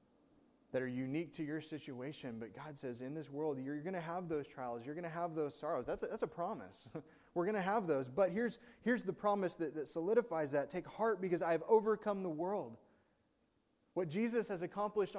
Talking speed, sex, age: 215 wpm, male, 20-39